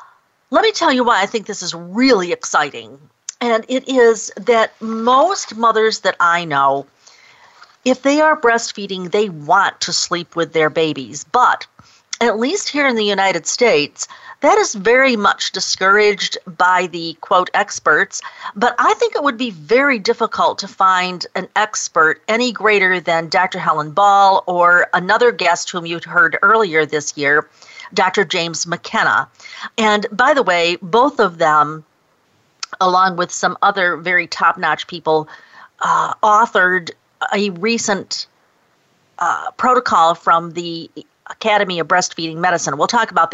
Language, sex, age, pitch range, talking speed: English, female, 50-69, 175-235 Hz, 150 wpm